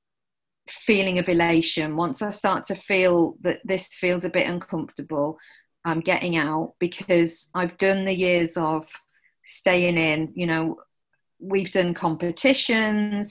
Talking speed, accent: 135 wpm, British